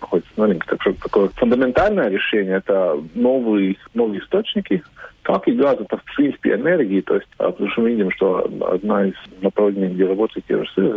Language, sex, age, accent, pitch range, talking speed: Russian, male, 40-59, native, 95-110 Hz, 160 wpm